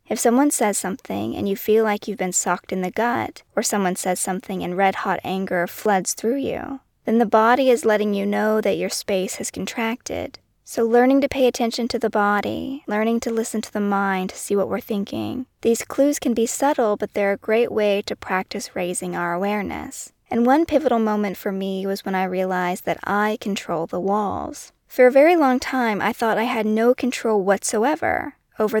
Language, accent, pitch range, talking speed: English, American, 195-235 Hz, 205 wpm